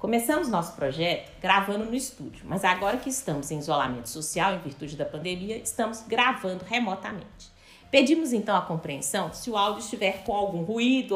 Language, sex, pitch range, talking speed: Portuguese, female, 170-225 Hz, 165 wpm